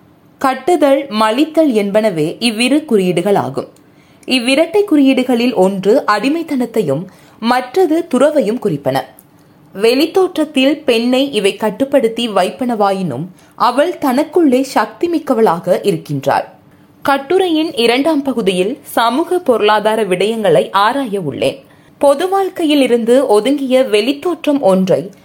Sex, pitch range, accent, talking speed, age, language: female, 205-290 Hz, native, 85 wpm, 20-39, Tamil